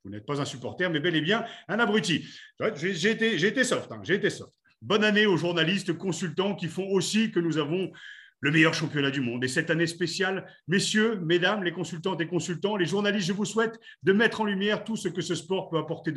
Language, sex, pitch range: French, male, 140-185 Hz